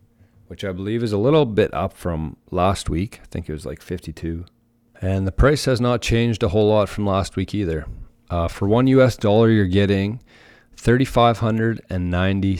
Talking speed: 180 wpm